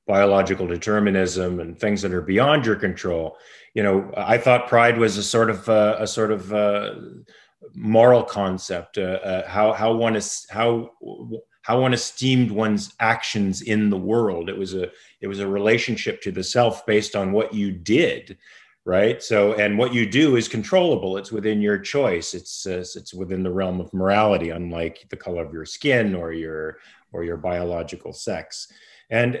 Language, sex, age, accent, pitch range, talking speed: English, male, 40-59, American, 100-120 Hz, 180 wpm